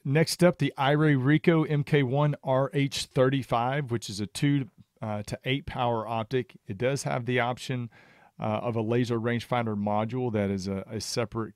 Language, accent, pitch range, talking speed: English, American, 105-130 Hz, 165 wpm